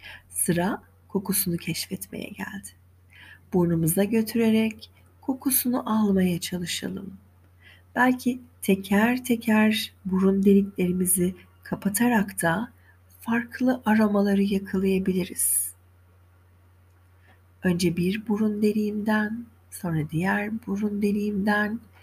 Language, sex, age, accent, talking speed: Turkish, female, 40-59, native, 75 wpm